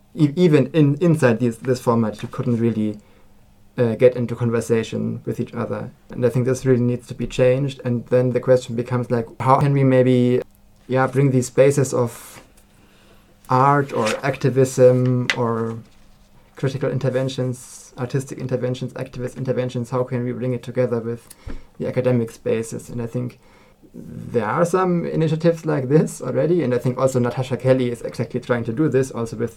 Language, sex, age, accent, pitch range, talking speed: German, male, 20-39, German, 115-130 Hz, 170 wpm